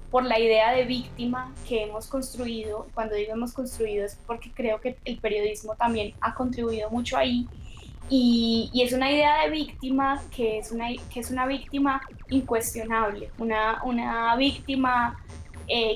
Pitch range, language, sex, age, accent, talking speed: 220-265 Hz, Spanish, female, 10-29, Colombian, 160 wpm